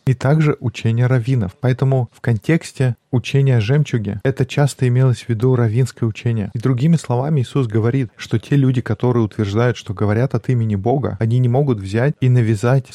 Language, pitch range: Russian, 115-130 Hz